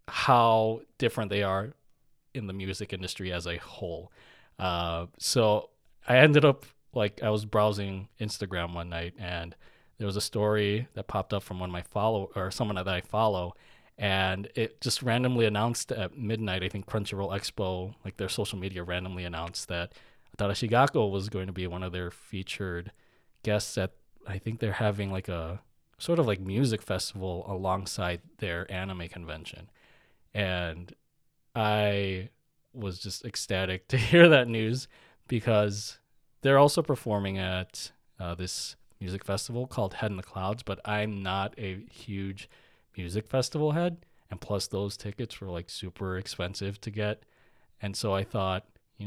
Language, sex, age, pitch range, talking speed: English, male, 20-39, 95-115 Hz, 160 wpm